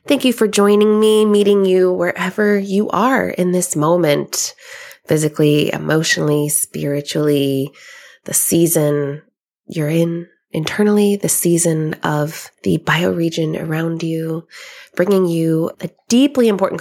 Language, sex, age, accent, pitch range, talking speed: English, female, 20-39, American, 155-195 Hz, 120 wpm